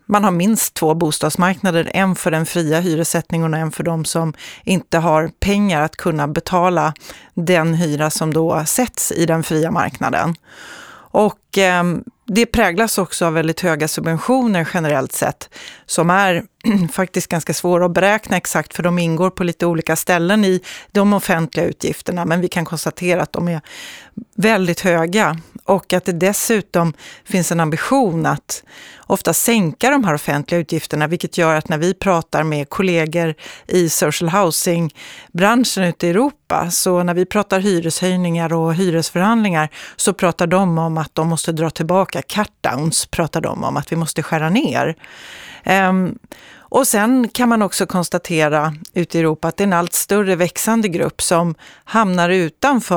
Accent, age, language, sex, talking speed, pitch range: native, 30-49, Swedish, female, 165 wpm, 160-195 Hz